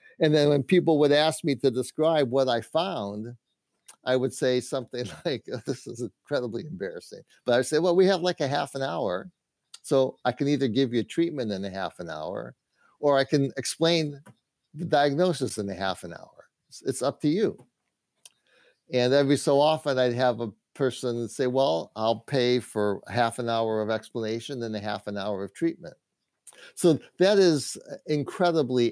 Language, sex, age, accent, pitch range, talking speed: English, male, 50-69, American, 110-140 Hz, 185 wpm